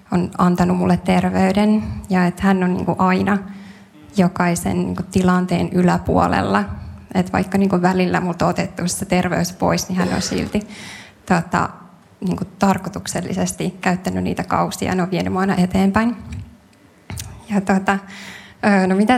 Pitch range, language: 185-205 Hz, Finnish